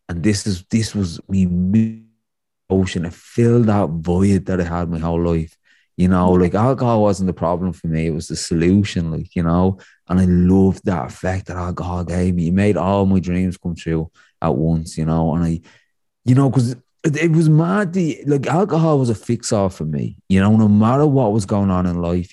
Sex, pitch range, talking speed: male, 90-115 Hz, 210 wpm